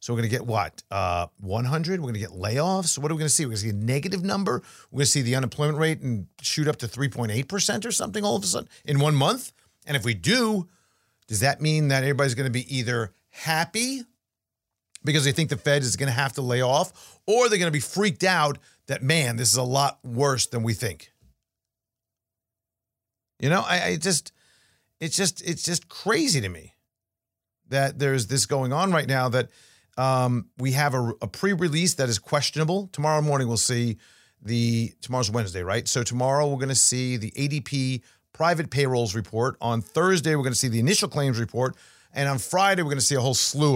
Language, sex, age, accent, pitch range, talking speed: English, male, 50-69, American, 110-155 Hz, 215 wpm